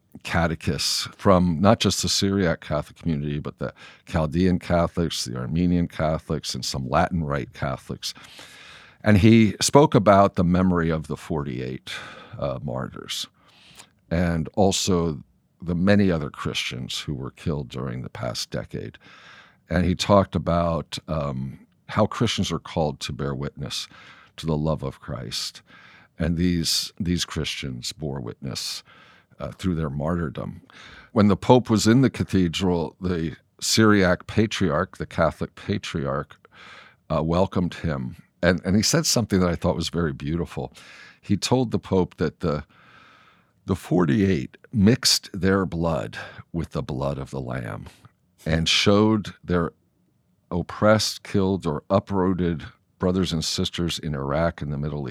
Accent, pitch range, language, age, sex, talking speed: American, 80-95 Hz, English, 50-69, male, 140 wpm